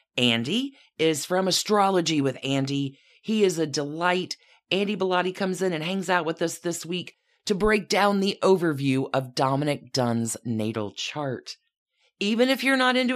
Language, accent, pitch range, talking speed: English, American, 135-195 Hz, 165 wpm